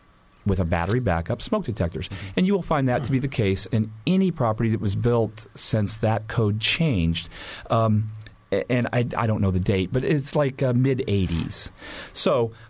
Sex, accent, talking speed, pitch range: male, American, 185 wpm, 95-115 Hz